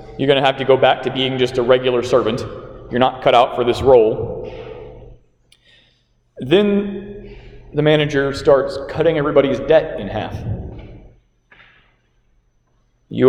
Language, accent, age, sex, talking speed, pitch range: English, American, 30-49, male, 130 wpm, 120-180 Hz